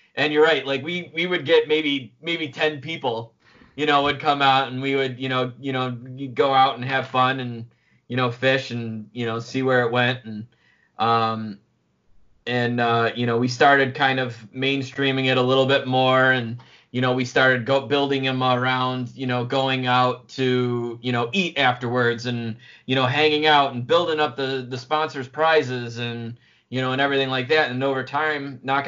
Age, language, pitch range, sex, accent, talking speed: 20-39, English, 120-135 Hz, male, American, 200 wpm